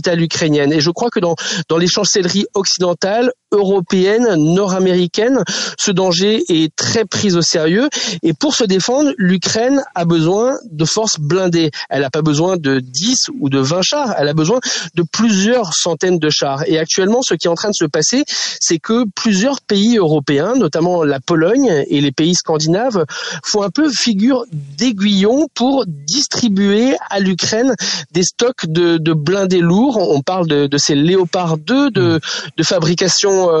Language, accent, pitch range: French, French, 160-210 Hz